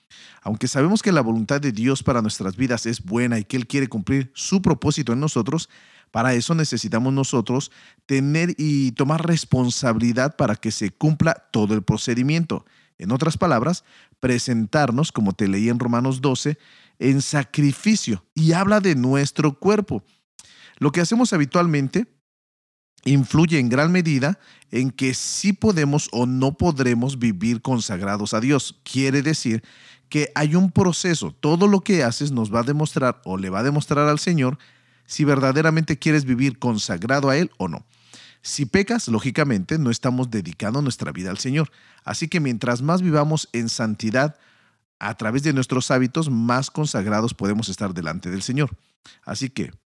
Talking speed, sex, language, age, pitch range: 160 wpm, male, Spanish, 40-59, 120-155 Hz